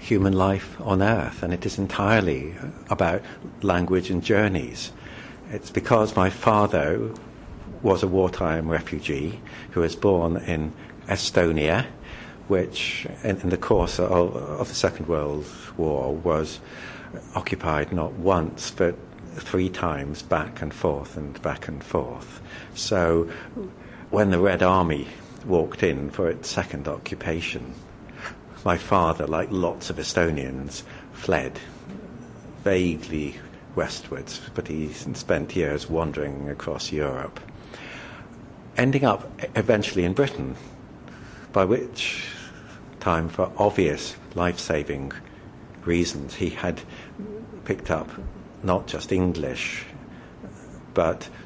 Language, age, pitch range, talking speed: English, 60-79, 75-95 Hz, 115 wpm